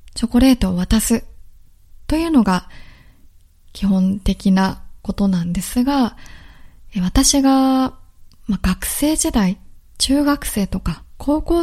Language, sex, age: Japanese, female, 20-39